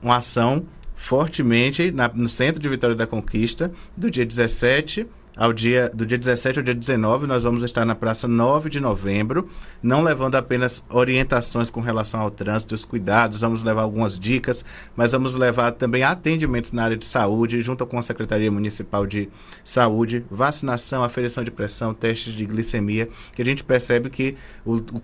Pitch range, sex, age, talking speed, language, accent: 115-130 Hz, male, 20-39, 175 wpm, Portuguese, Brazilian